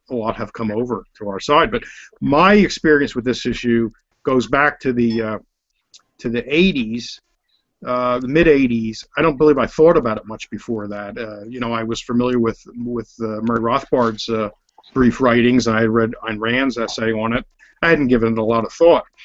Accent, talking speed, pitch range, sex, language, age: American, 200 wpm, 115-145 Hz, male, English, 50-69